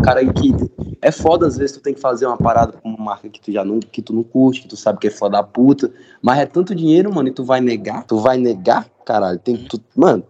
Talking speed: 270 wpm